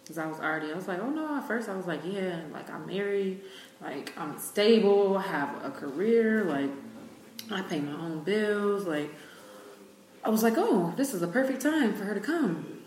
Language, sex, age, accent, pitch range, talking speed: English, female, 20-39, American, 145-175 Hz, 210 wpm